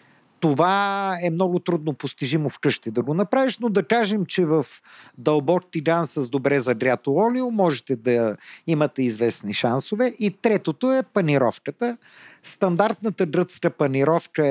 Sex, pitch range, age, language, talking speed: male, 140-195 Hz, 50-69, Bulgarian, 135 wpm